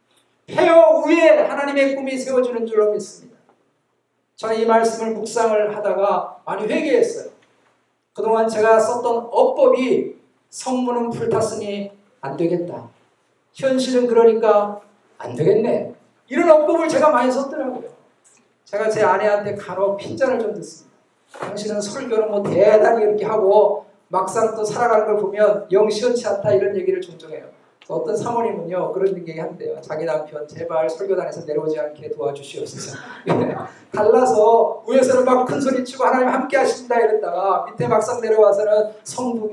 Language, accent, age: Korean, native, 40-59